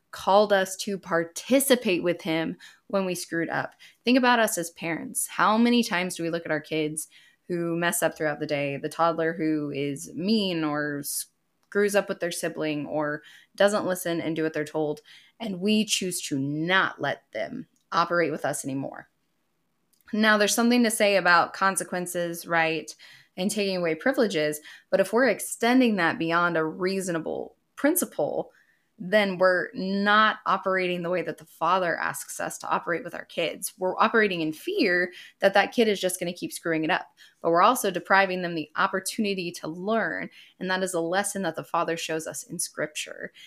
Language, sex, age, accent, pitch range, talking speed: English, female, 10-29, American, 160-200 Hz, 185 wpm